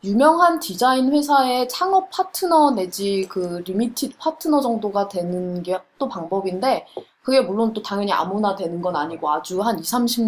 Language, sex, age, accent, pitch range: Korean, female, 20-39, native, 185-280 Hz